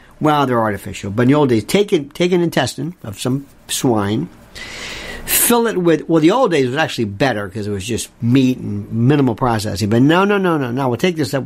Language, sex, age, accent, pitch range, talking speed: English, male, 60-79, American, 130-200 Hz, 230 wpm